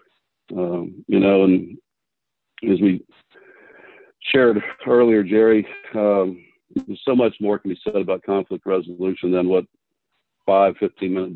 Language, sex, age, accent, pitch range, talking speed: English, male, 60-79, American, 95-110 Hz, 120 wpm